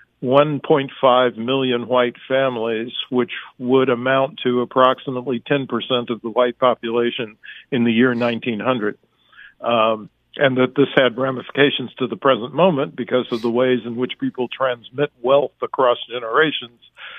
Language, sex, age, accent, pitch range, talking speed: English, male, 50-69, American, 120-135 Hz, 140 wpm